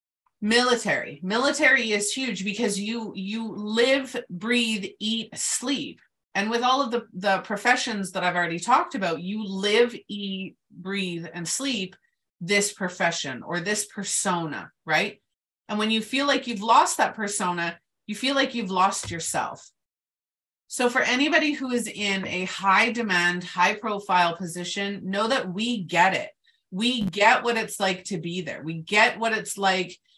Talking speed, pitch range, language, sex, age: 160 wpm, 190-245 Hz, English, female, 30-49